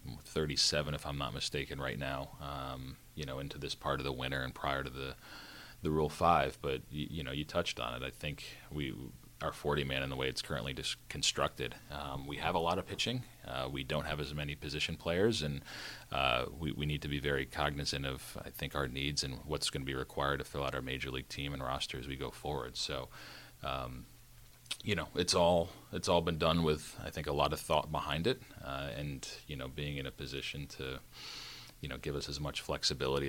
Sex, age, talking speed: male, 30-49, 230 wpm